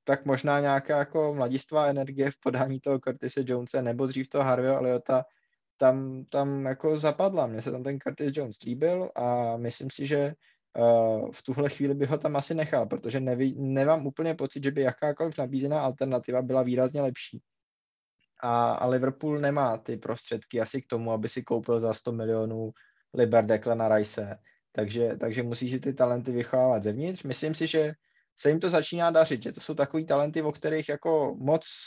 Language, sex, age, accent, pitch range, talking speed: Czech, male, 20-39, native, 125-160 Hz, 180 wpm